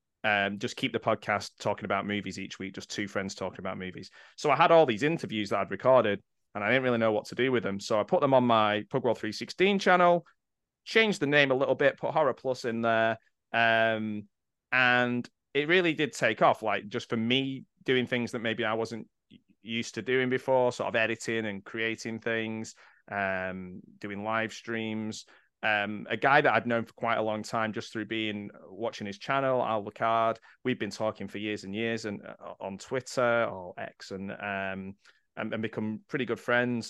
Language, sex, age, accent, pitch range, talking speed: English, male, 20-39, British, 105-120 Hz, 205 wpm